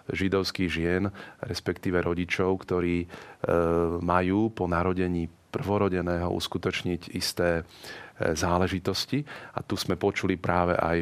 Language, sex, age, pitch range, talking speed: Slovak, male, 40-59, 85-100 Hz, 100 wpm